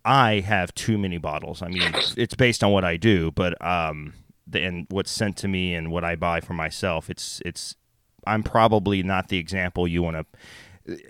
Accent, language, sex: American, English, male